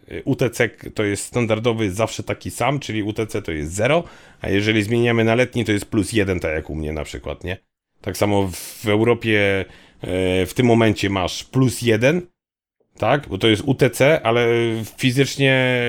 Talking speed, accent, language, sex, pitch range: 170 wpm, native, Polish, male, 95-120 Hz